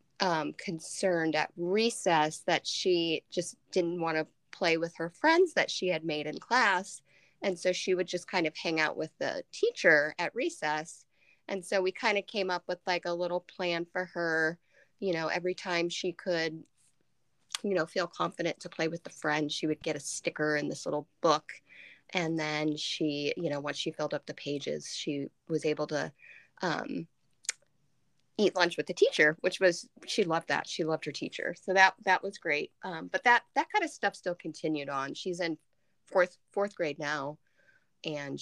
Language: English